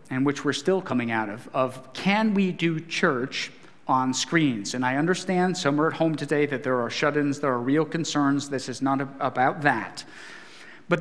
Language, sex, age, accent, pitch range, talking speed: English, male, 40-59, American, 160-220 Hz, 195 wpm